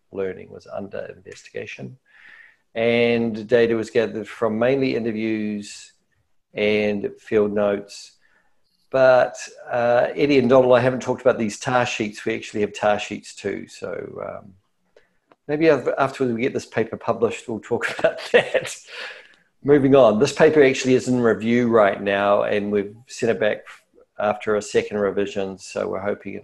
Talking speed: 155 wpm